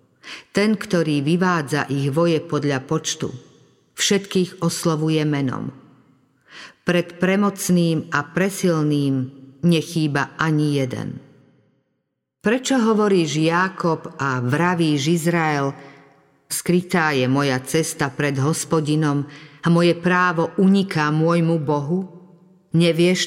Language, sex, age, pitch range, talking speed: Slovak, female, 50-69, 150-190 Hz, 95 wpm